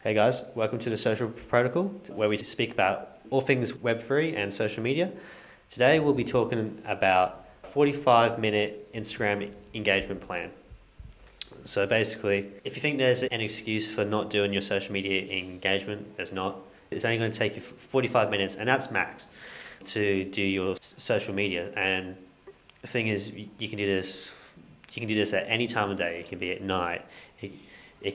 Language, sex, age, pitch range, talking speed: English, male, 20-39, 95-120 Hz, 180 wpm